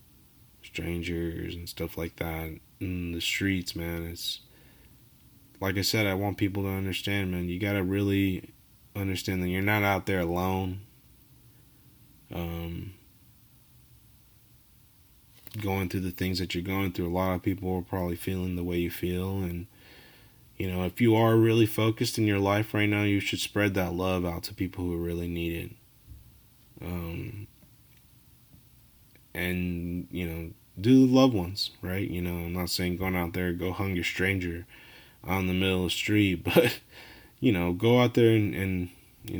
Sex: male